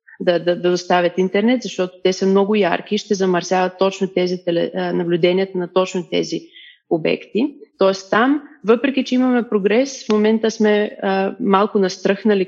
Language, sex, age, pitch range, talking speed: Bulgarian, female, 30-49, 185-225 Hz, 160 wpm